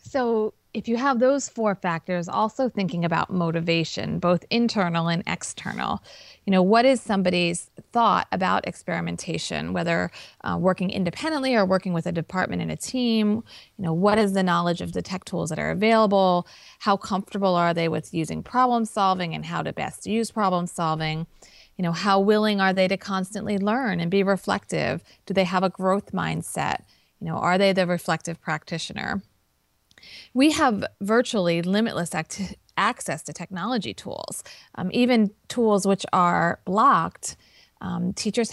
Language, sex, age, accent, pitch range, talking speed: English, female, 30-49, American, 170-205 Hz, 160 wpm